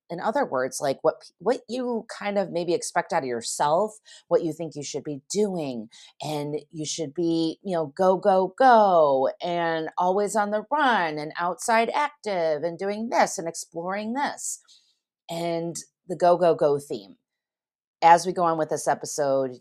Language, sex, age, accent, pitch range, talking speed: English, female, 30-49, American, 135-185 Hz, 175 wpm